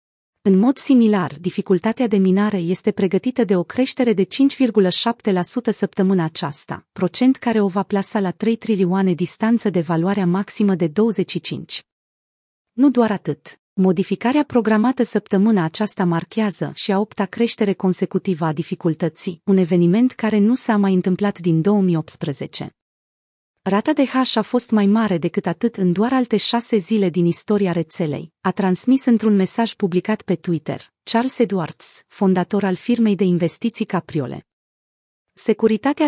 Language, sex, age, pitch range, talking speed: Romanian, female, 30-49, 180-230 Hz, 145 wpm